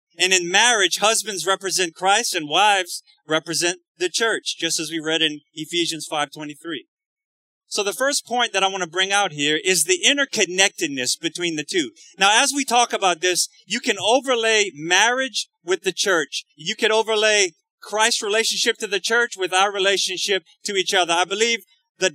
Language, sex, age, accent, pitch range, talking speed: English, male, 30-49, American, 175-240 Hz, 175 wpm